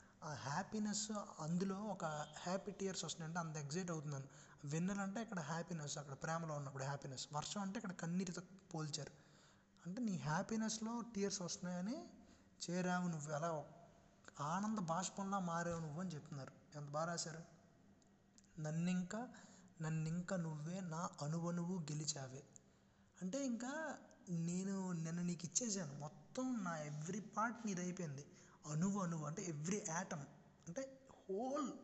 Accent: native